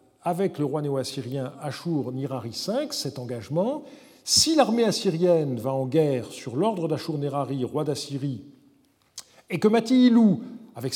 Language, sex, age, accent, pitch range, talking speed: French, male, 50-69, French, 135-195 Hz, 125 wpm